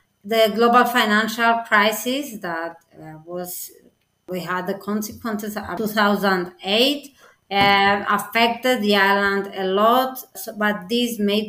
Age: 30-49